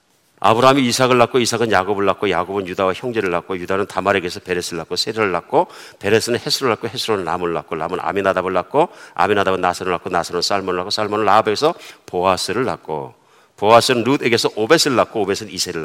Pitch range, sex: 110-165 Hz, male